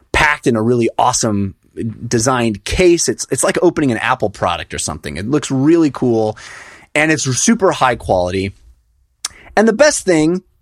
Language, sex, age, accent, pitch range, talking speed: English, male, 30-49, American, 110-155 Hz, 165 wpm